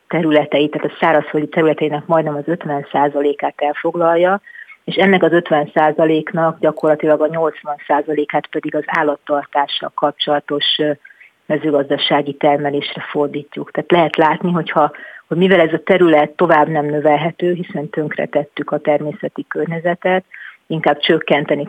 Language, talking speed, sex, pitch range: Hungarian, 115 wpm, female, 150-165 Hz